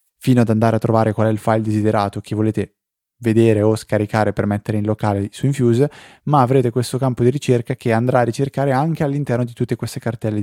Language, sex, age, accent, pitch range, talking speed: Italian, male, 20-39, native, 110-130 Hz, 215 wpm